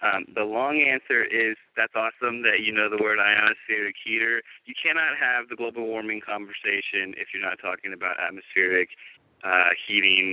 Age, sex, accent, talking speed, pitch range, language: 30-49, male, American, 170 wpm, 110-150 Hz, English